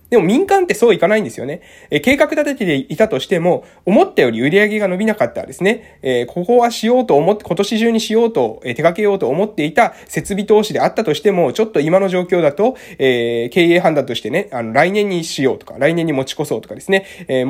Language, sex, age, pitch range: Japanese, male, 20-39, 145-220 Hz